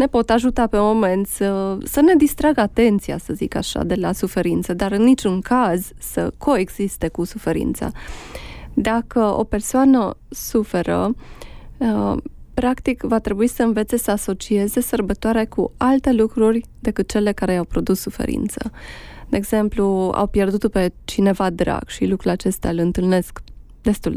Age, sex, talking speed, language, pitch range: 20-39, female, 145 wpm, Romanian, 190-235 Hz